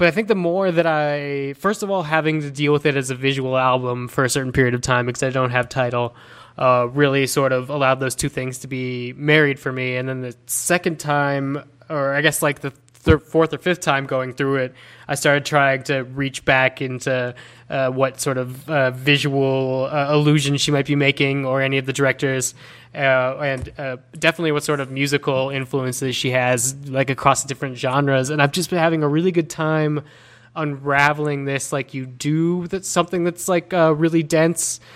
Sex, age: male, 20-39